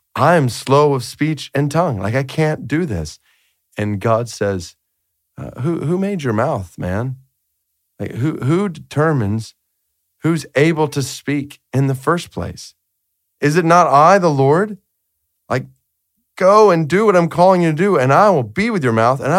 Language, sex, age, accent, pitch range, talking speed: English, male, 40-59, American, 105-170 Hz, 180 wpm